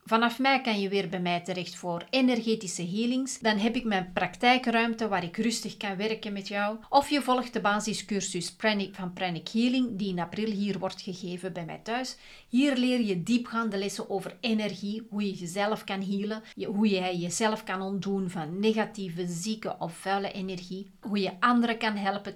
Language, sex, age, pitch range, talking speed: Dutch, female, 30-49, 190-230 Hz, 180 wpm